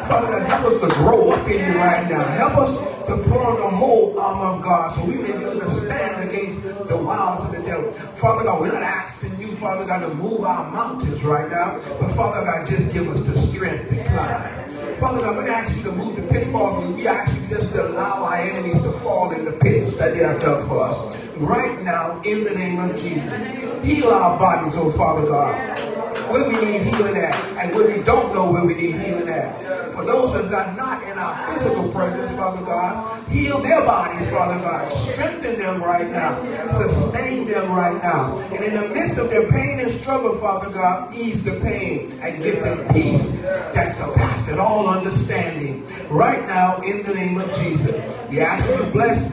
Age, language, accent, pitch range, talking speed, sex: 40-59, English, American, 165-210 Hz, 210 wpm, male